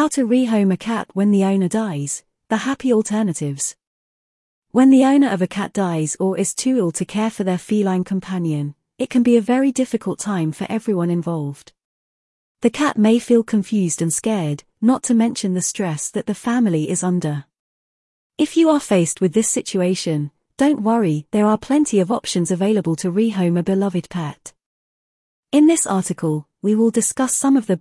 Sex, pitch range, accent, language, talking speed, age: female, 175-230 Hz, British, English, 185 wpm, 30-49